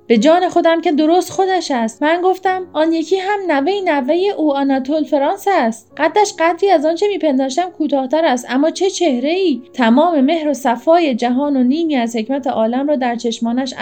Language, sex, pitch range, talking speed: Persian, female, 240-315 Hz, 180 wpm